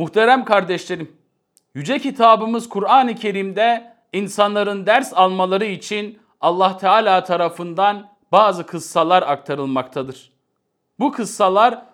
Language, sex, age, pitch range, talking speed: Turkish, male, 40-59, 170-225 Hz, 90 wpm